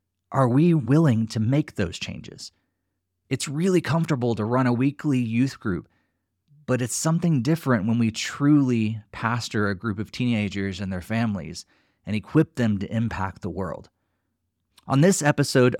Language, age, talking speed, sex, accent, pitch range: English, 30-49, 155 wpm, male, American, 100-140 Hz